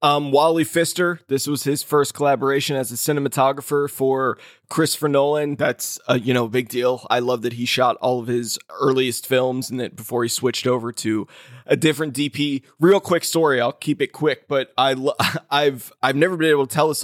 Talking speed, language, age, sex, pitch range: 205 wpm, English, 20-39, male, 125-145 Hz